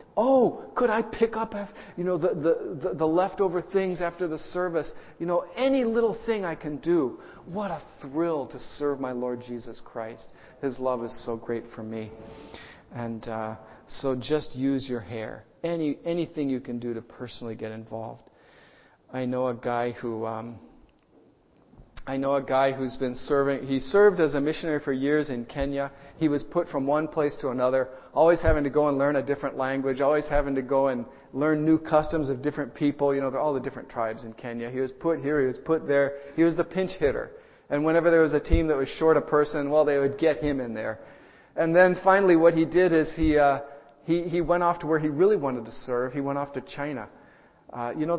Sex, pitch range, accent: male, 130-165 Hz, American